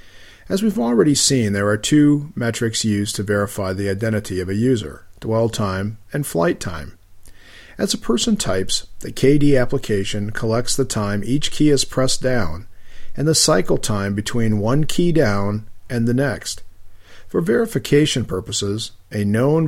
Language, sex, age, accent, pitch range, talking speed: English, male, 50-69, American, 100-135 Hz, 160 wpm